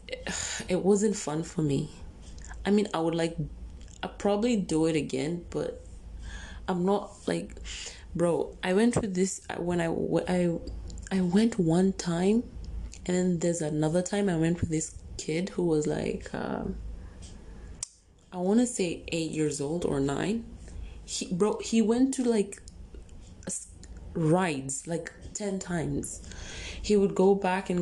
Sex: female